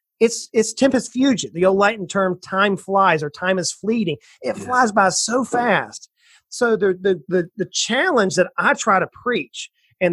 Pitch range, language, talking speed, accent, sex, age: 180-235 Hz, English, 185 wpm, American, male, 30-49